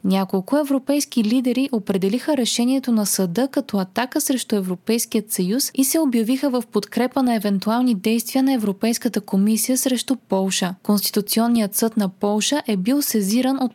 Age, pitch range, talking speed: 20-39, 200-260 Hz, 145 wpm